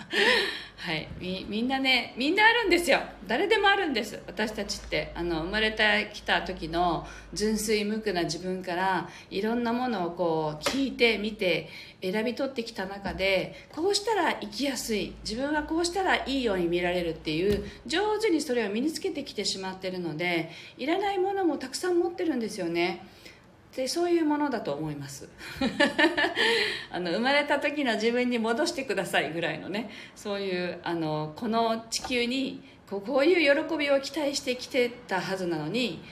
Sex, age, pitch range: female, 40-59, 170-250 Hz